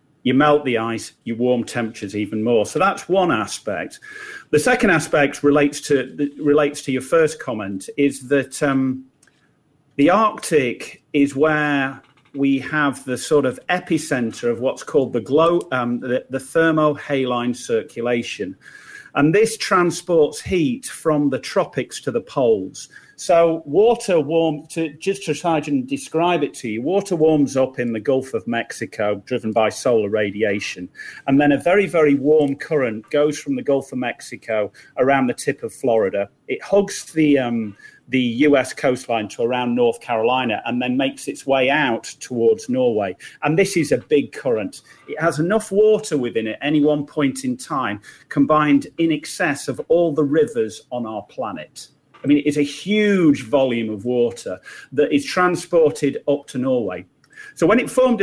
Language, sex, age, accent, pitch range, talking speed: English, male, 40-59, British, 125-165 Hz, 165 wpm